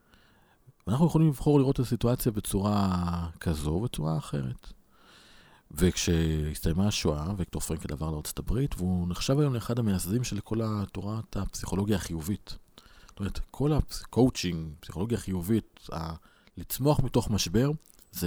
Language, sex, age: Hebrew, male, 40-59